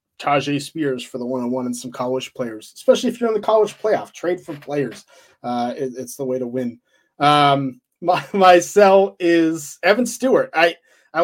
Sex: male